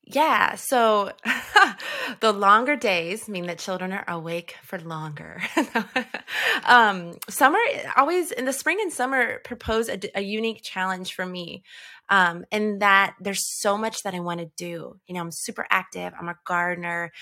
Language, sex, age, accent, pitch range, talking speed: English, female, 20-39, American, 175-230 Hz, 160 wpm